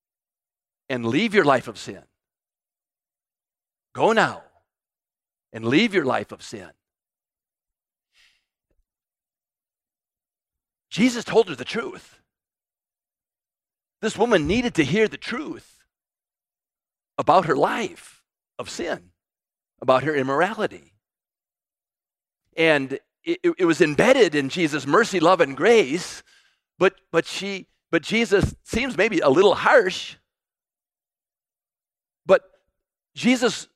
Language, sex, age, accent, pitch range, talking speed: English, male, 50-69, American, 155-240 Hz, 100 wpm